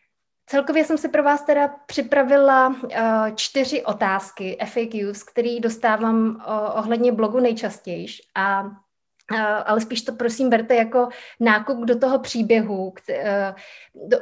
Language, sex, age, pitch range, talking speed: Czech, female, 20-39, 210-240 Hz, 135 wpm